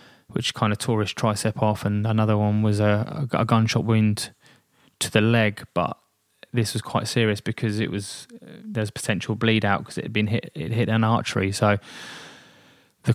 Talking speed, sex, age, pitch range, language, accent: 190 wpm, male, 20-39, 105-115 Hz, English, British